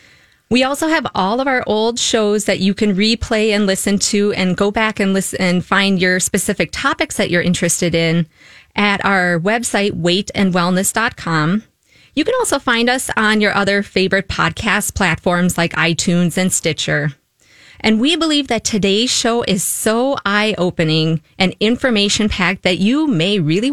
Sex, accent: female, American